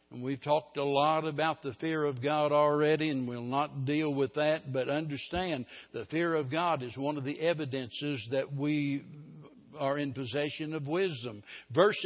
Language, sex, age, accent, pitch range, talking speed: English, male, 60-79, American, 130-160 Hz, 180 wpm